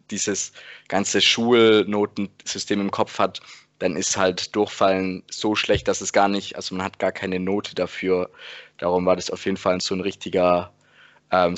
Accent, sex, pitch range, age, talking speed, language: German, male, 100-110 Hz, 20-39, 170 wpm, German